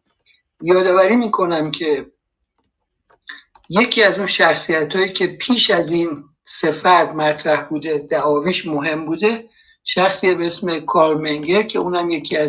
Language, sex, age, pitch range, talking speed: Persian, male, 60-79, 150-195 Hz, 120 wpm